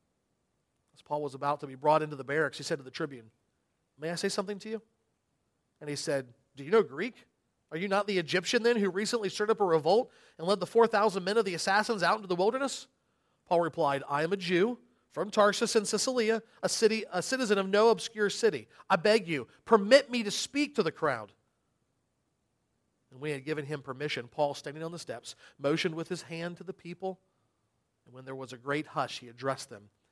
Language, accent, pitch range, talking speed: English, American, 145-205 Hz, 210 wpm